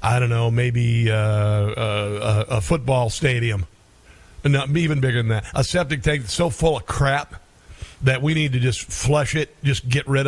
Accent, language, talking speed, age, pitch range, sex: American, English, 185 wpm, 50-69, 120-160 Hz, male